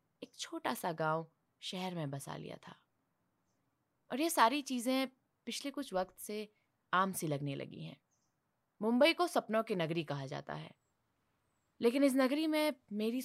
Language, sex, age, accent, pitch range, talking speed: Hindi, female, 20-39, native, 150-240 Hz, 160 wpm